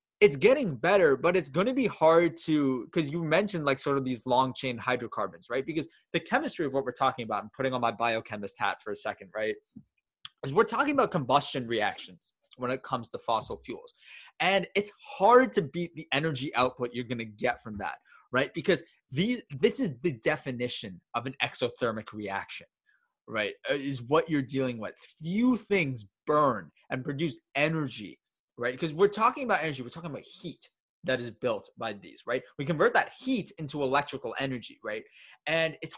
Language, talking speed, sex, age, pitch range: English, 190 wpm, male, 20-39, 125-170 Hz